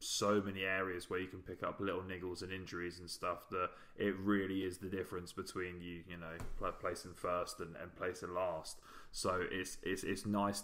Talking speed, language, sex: 205 wpm, English, male